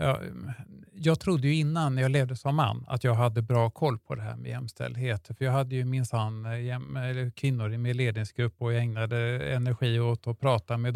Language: Swedish